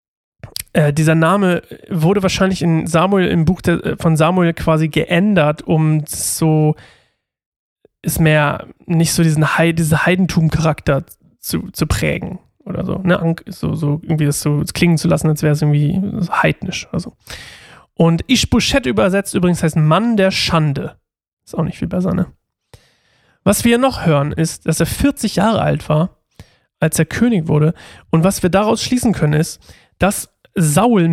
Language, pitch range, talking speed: German, 155-190 Hz, 165 wpm